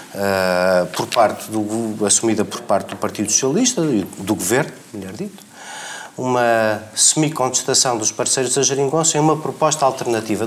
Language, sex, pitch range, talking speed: Portuguese, male, 105-130 Hz, 140 wpm